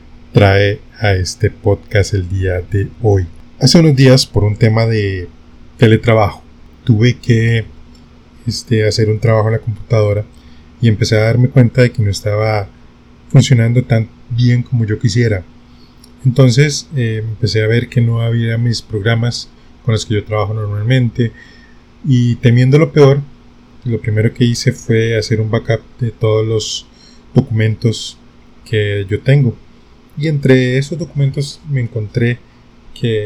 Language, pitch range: Spanish, 100-120 Hz